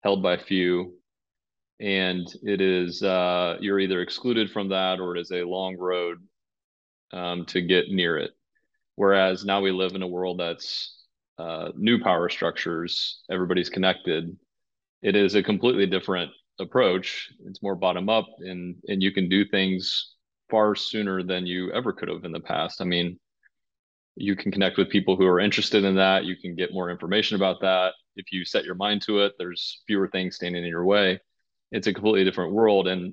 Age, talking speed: 30-49, 185 wpm